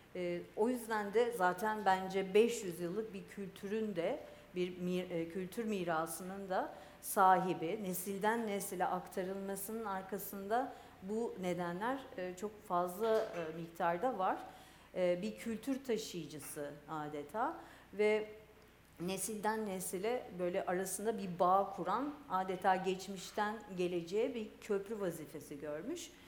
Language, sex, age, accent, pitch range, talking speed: Turkish, female, 50-69, native, 185-235 Hz, 100 wpm